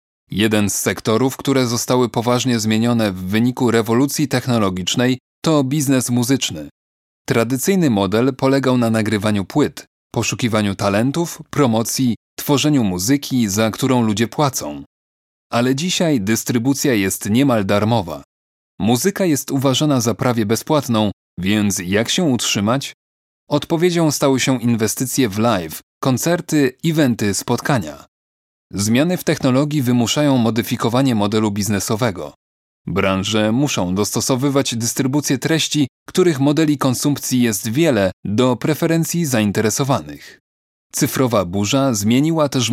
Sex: male